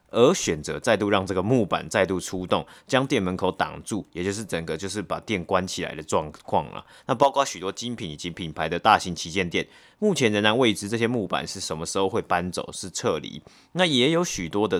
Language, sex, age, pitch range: Chinese, male, 30-49, 90-125 Hz